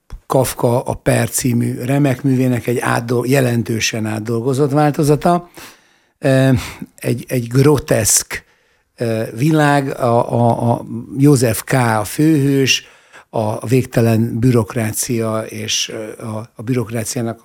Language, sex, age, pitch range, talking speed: Hungarian, male, 60-79, 115-140 Hz, 100 wpm